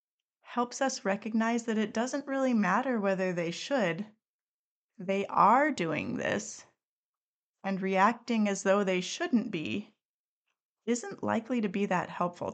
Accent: American